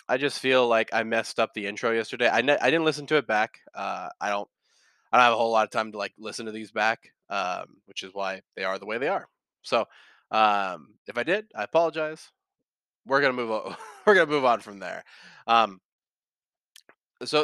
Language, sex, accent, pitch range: English, male, American, 110-155 Hz